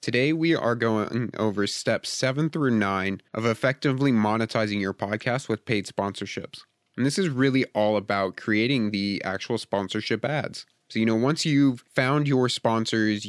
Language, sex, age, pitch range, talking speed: English, male, 30-49, 100-120 Hz, 165 wpm